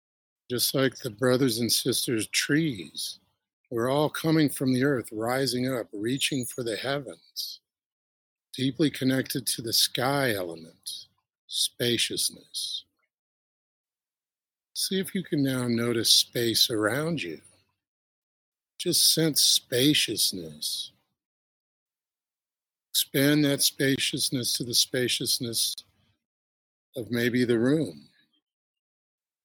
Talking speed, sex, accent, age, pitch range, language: 100 wpm, male, American, 50-69, 105-135 Hz, English